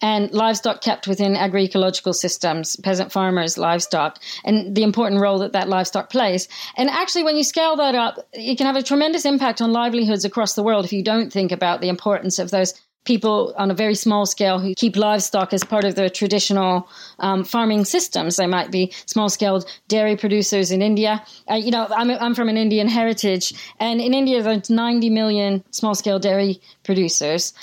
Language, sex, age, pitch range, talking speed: English, female, 40-59, 195-235 Hz, 190 wpm